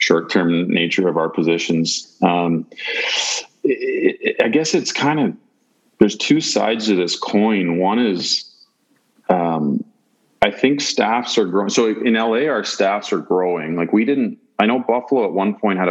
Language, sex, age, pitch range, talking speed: English, male, 40-59, 90-120 Hz, 160 wpm